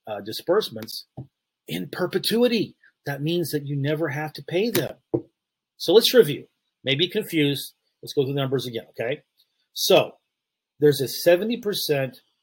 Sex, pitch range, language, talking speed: male, 110-140 Hz, English, 145 wpm